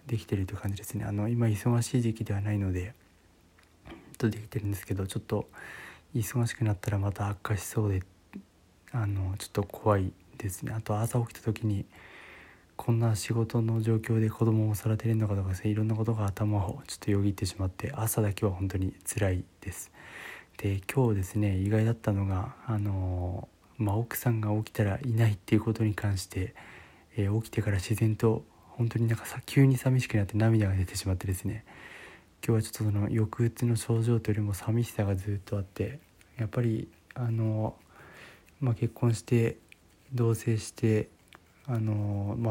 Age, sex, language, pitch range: 20-39, male, Japanese, 100-115 Hz